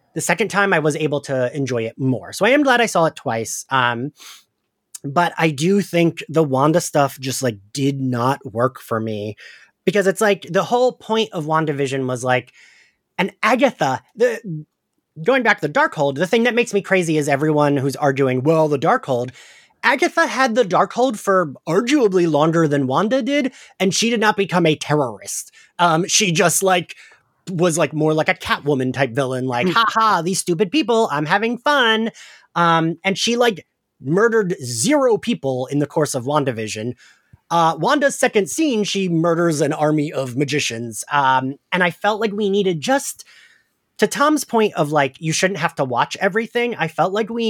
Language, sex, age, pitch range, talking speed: English, male, 30-49, 140-210 Hz, 190 wpm